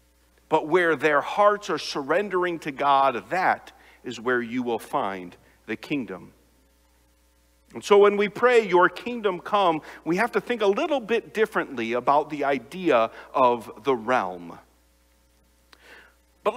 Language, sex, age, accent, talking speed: English, male, 50-69, American, 140 wpm